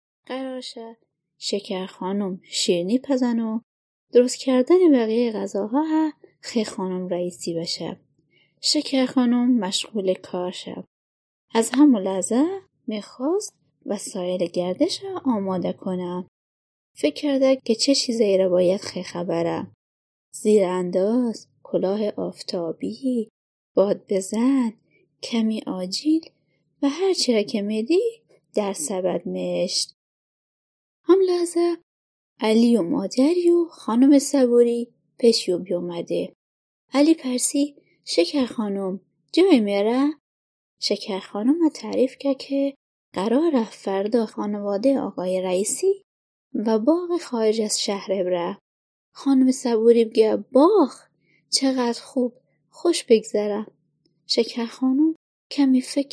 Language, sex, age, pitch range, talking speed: Persian, female, 20-39, 195-280 Hz, 105 wpm